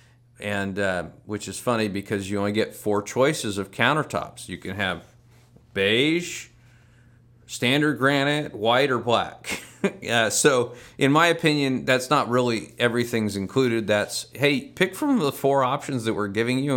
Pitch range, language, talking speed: 105-120 Hz, English, 155 wpm